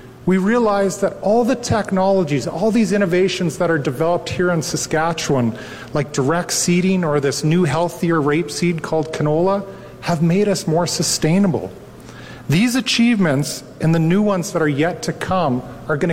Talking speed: 160 wpm